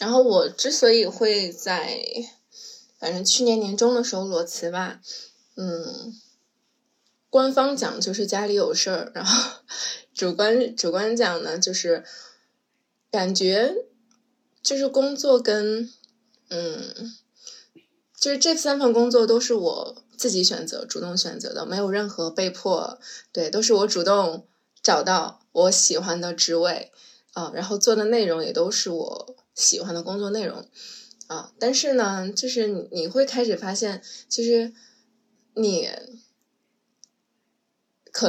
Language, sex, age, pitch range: Chinese, female, 20-39, 190-250 Hz